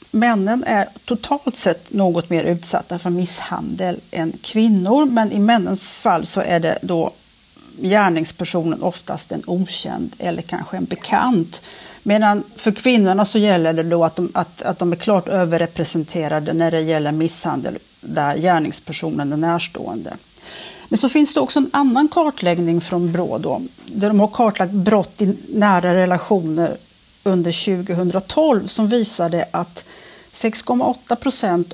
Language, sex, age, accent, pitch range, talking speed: Swedish, female, 40-59, Norwegian, 175-225 Hz, 145 wpm